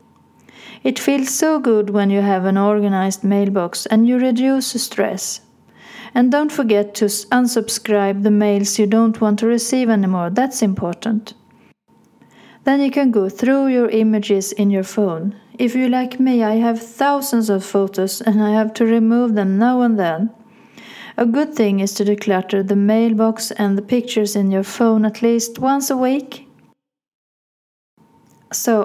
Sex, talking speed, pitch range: female, 160 wpm, 205-240 Hz